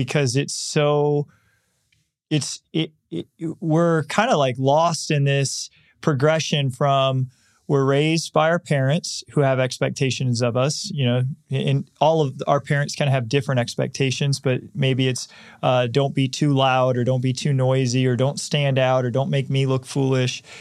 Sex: male